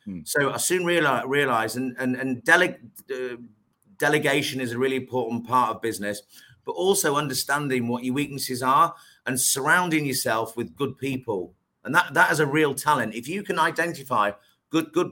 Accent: British